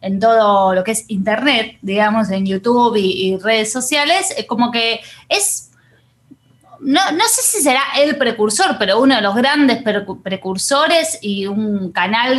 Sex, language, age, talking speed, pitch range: female, Spanish, 20-39, 155 wpm, 200-275 Hz